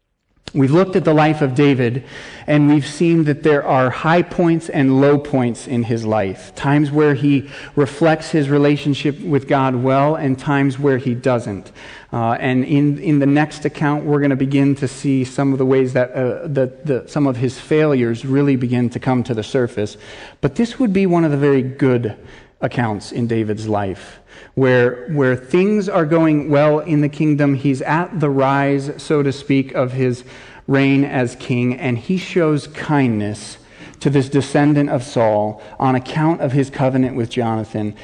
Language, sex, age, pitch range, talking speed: English, male, 40-59, 125-145 Hz, 180 wpm